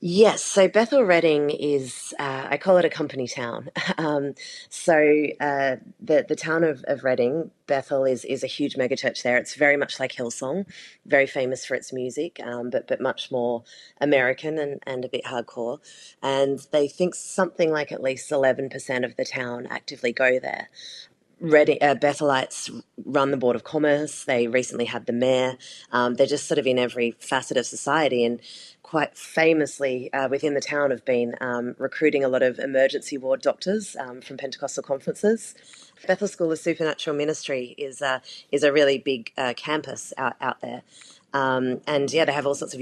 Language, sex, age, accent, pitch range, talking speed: English, female, 30-49, Australian, 125-145 Hz, 180 wpm